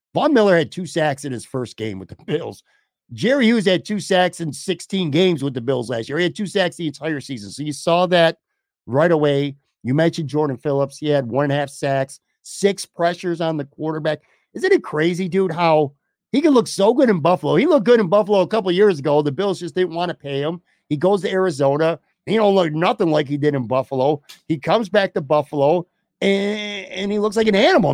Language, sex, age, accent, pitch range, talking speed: English, male, 50-69, American, 140-185 Hz, 230 wpm